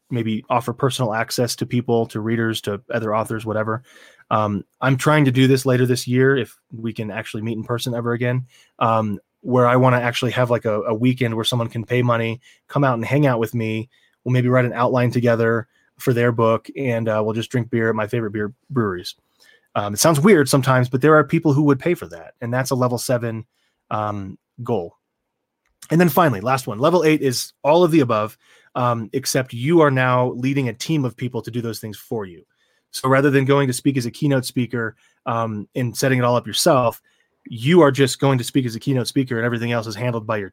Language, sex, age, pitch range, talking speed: English, male, 20-39, 110-130 Hz, 230 wpm